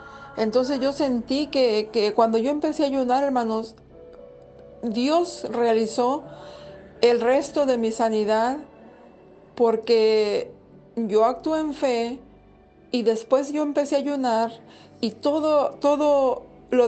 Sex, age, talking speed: female, 50-69, 115 wpm